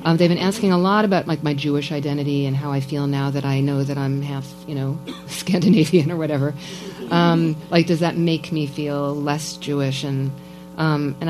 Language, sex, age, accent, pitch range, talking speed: English, female, 40-59, American, 135-170 Hz, 205 wpm